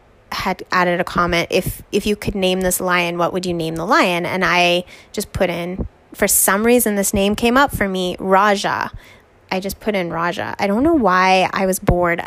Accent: American